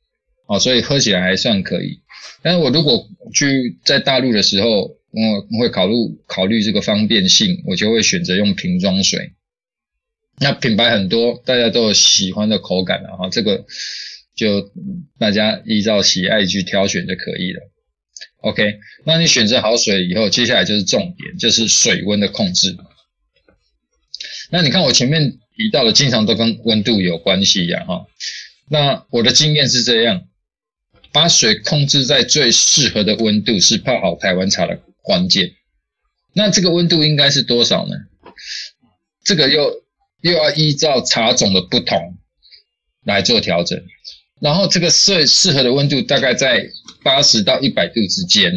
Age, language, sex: 20-39, Chinese, male